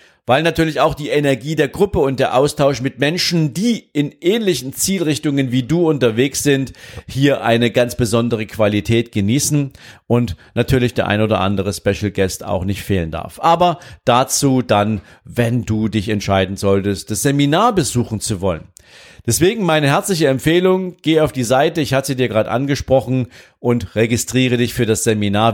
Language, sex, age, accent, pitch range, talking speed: German, male, 40-59, German, 110-150 Hz, 165 wpm